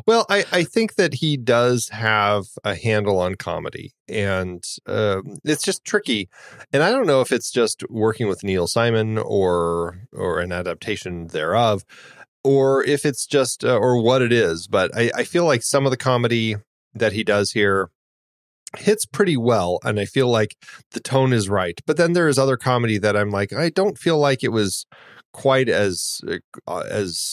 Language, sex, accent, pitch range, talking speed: English, male, American, 105-150 Hz, 185 wpm